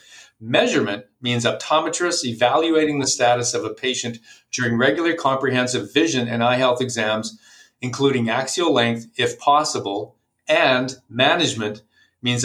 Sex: male